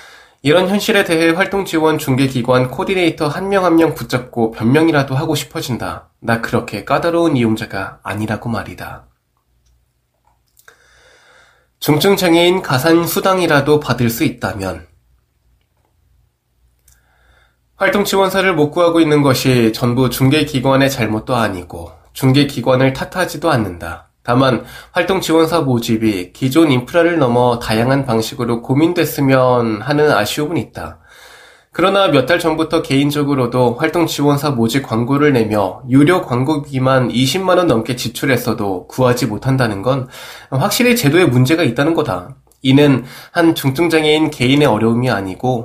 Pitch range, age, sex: 115-160 Hz, 20-39, male